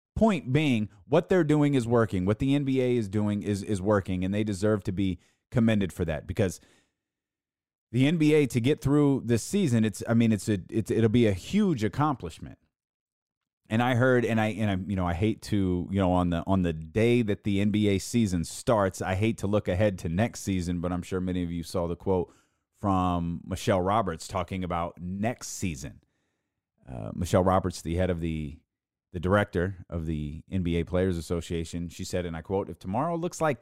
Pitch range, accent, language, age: 90-115 Hz, American, English, 30-49